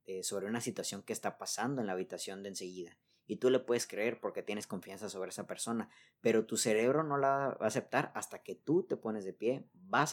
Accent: Mexican